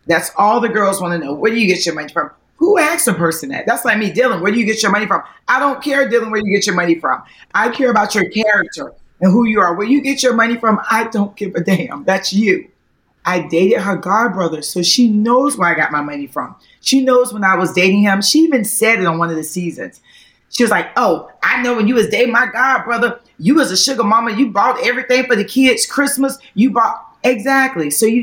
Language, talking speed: English, 255 wpm